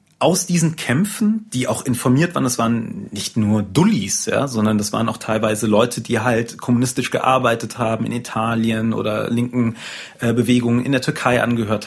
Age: 30-49